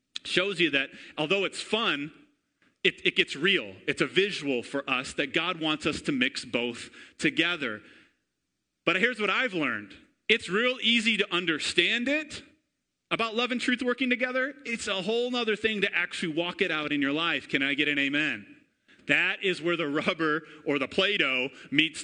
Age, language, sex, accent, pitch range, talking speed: 30-49, English, male, American, 160-220 Hz, 180 wpm